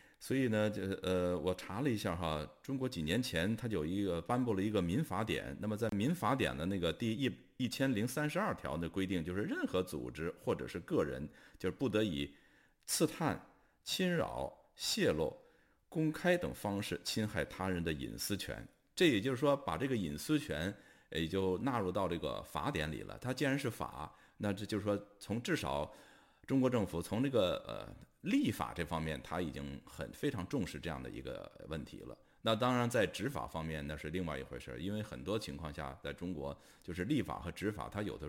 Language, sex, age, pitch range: Chinese, male, 50-69, 85-130 Hz